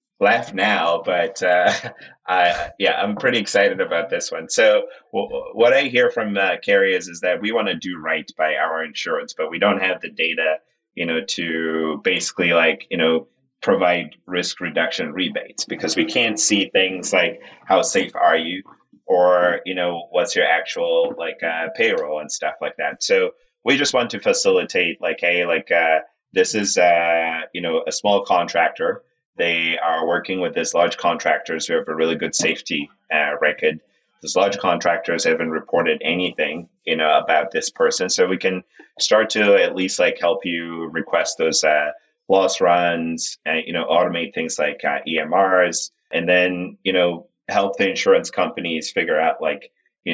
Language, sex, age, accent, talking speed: English, male, 30-49, American, 180 wpm